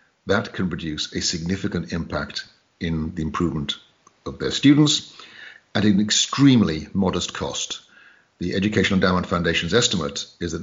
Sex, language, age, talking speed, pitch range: male, English, 50-69, 135 wpm, 85-100 Hz